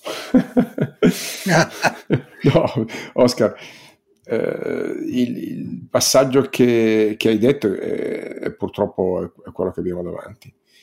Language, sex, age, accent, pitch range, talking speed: Italian, male, 50-69, native, 90-110 Hz, 105 wpm